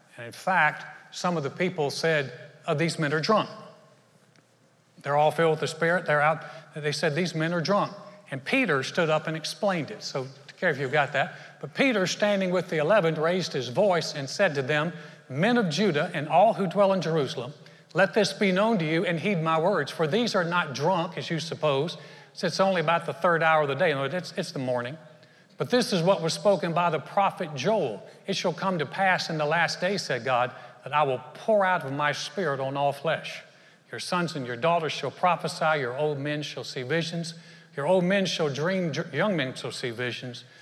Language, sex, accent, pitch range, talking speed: English, male, American, 145-185 Hz, 220 wpm